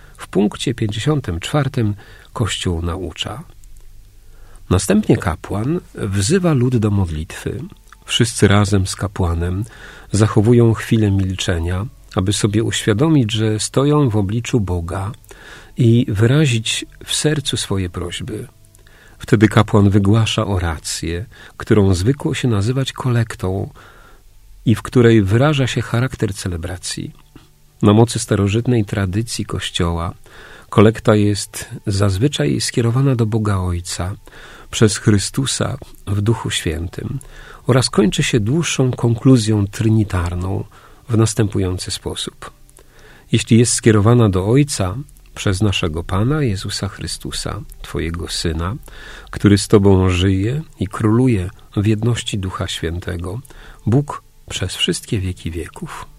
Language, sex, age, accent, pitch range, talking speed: Polish, male, 40-59, native, 95-120 Hz, 110 wpm